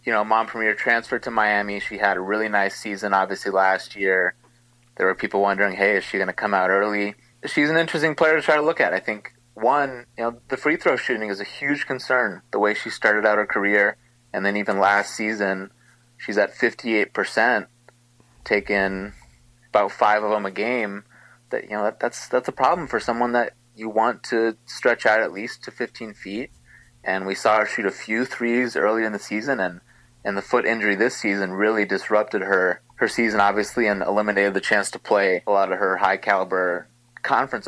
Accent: American